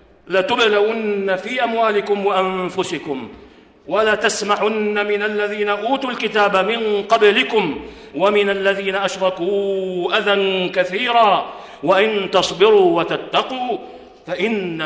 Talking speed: 80 wpm